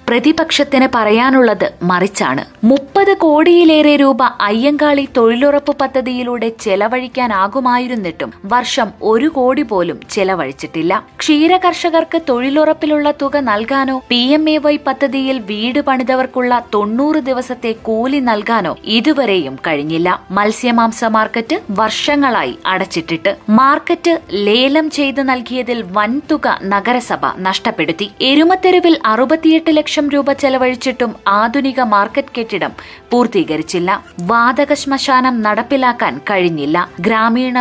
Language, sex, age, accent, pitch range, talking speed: Malayalam, female, 20-39, native, 210-280 Hz, 85 wpm